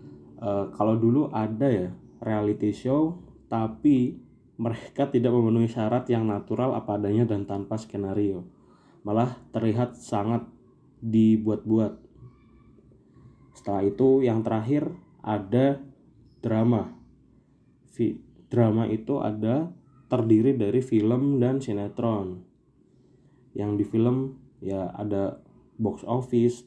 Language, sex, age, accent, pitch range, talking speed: Indonesian, male, 20-39, native, 100-120 Hz, 100 wpm